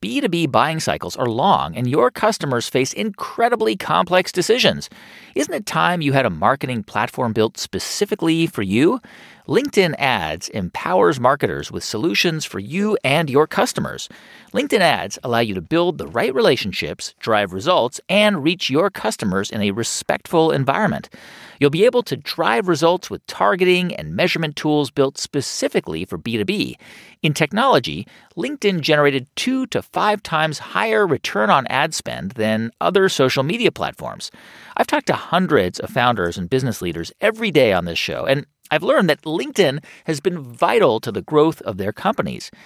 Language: English